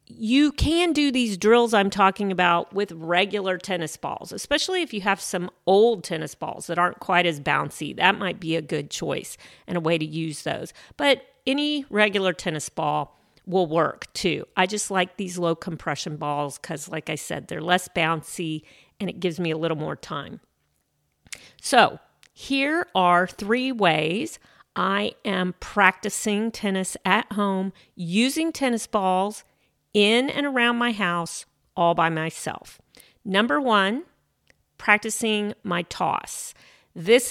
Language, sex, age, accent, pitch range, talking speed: English, female, 40-59, American, 170-210 Hz, 155 wpm